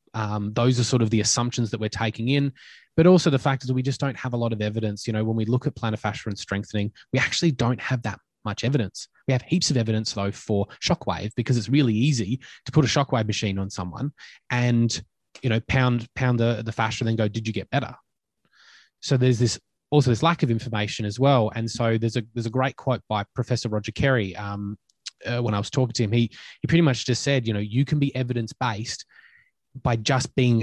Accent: Australian